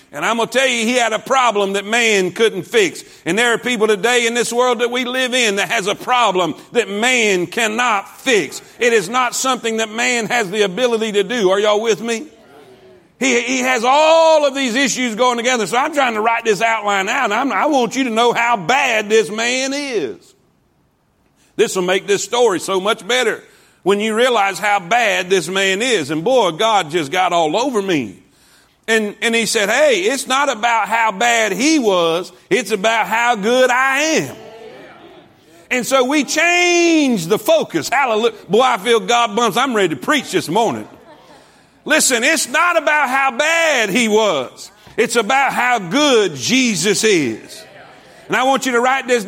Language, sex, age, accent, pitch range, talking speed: English, male, 50-69, American, 220-265 Hz, 190 wpm